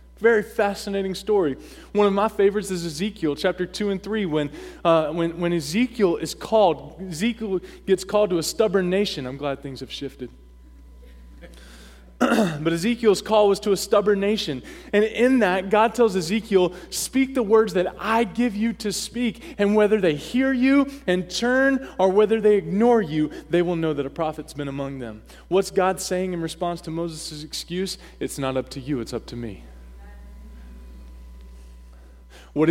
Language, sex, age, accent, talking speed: English, male, 20-39, American, 170 wpm